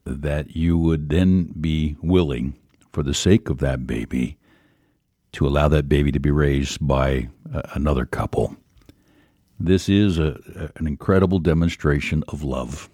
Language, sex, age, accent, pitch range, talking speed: English, male, 60-79, American, 75-90 Hz, 140 wpm